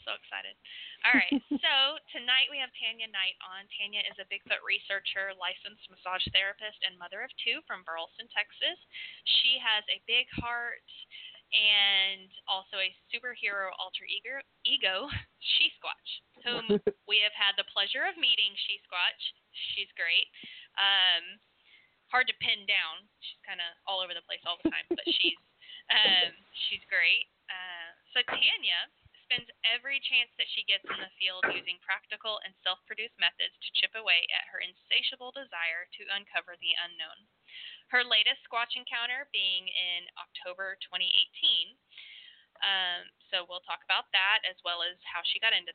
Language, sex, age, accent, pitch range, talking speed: English, female, 10-29, American, 190-250 Hz, 155 wpm